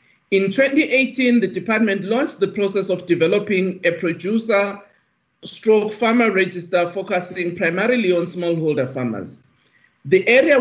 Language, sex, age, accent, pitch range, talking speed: English, male, 50-69, South African, 175-225 Hz, 120 wpm